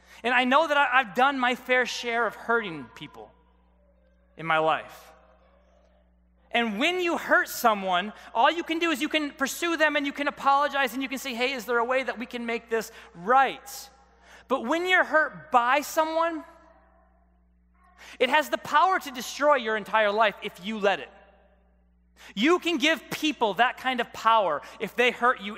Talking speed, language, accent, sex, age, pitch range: 185 wpm, English, American, male, 30-49, 220-290 Hz